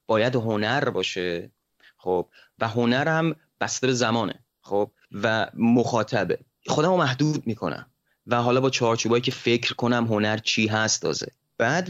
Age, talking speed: 30-49, 140 wpm